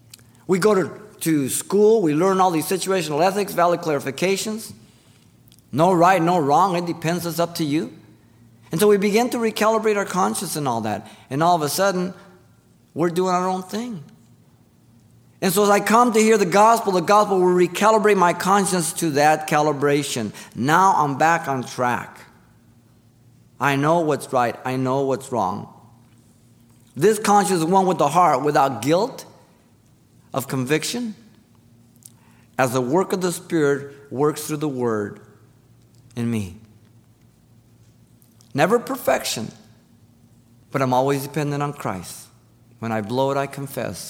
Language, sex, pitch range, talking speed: English, male, 120-175 Hz, 150 wpm